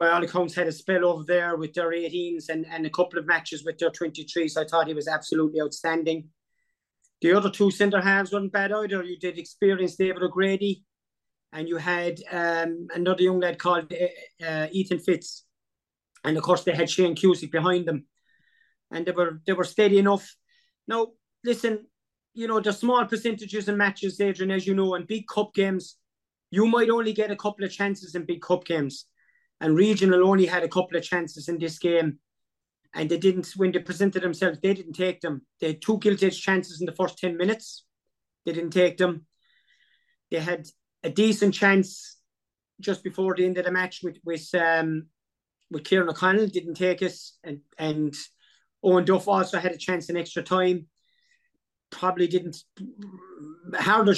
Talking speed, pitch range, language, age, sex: 180 wpm, 165-195 Hz, English, 30-49, male